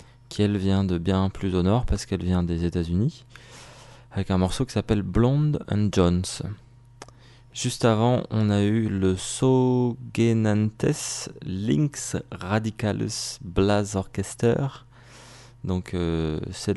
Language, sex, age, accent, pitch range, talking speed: English, male, 20-39, French, 95-120 Hz, 125 wpm